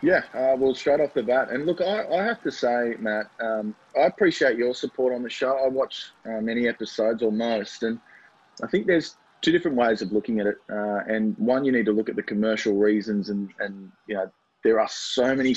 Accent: Australian